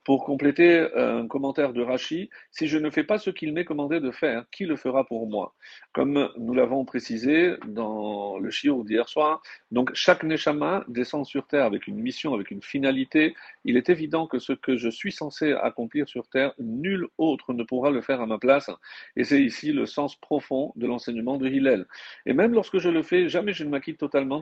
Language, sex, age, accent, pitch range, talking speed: French, male, 40-59, French, 125-160 Hz, 210 wpm